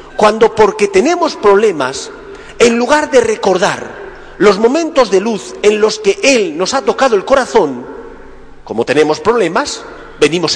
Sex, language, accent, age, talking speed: male, Spanish, Spanish, 40-59, 140 wpm